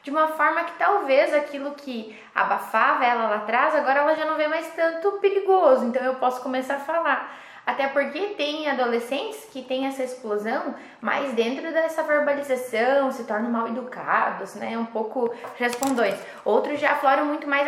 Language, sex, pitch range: Portuguese, female, 240-295 Hz